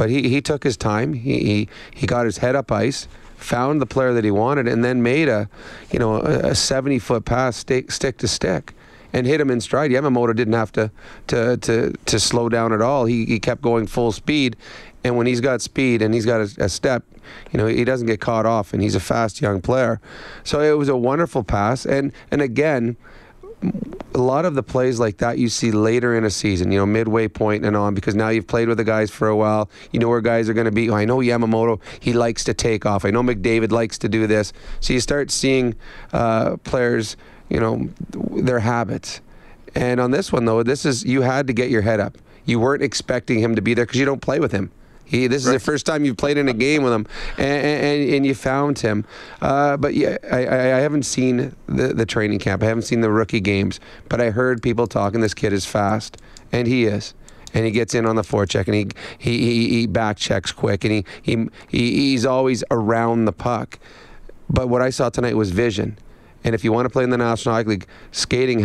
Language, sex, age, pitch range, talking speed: English, male, 30-49, 110-130 Hz, 235 wpm